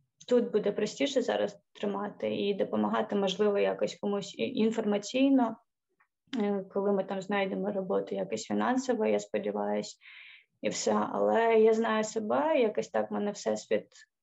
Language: Ukrainian